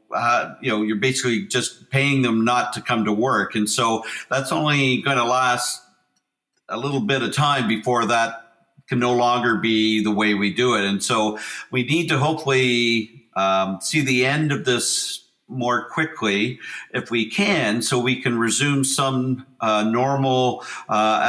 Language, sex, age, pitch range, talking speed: English, male, 50-69, 115-140 Hz, 170 wpm